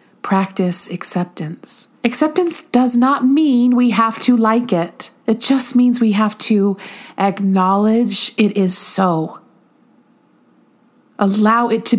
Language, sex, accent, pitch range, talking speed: English, female, American, 180-245 Hz, 120 wpm